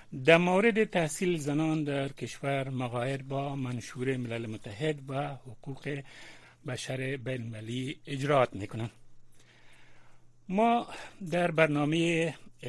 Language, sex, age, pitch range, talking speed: Persian, male, 60-79, 125-160 Hz, 95 wpm